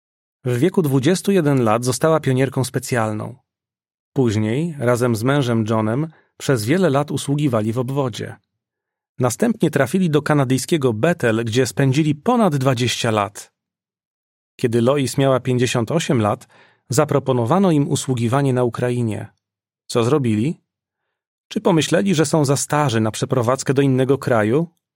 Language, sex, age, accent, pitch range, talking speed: Polish, male, 40-59, native, 120-155 Hz, 125 wpm